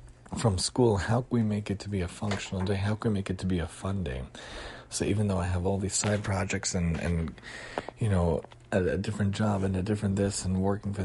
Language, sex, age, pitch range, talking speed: English, male, 40-59, 90-105 Hz, 250 wpm